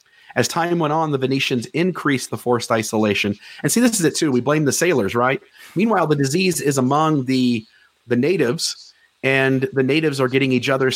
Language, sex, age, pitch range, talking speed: English, male, 40-59, 125-155 Hz, 195 wpm